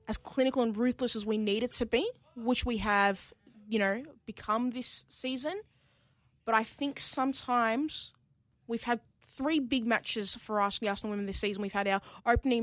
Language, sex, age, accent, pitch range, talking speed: English, female, 20-39, Australian, 200-240 Hz, 180 wpm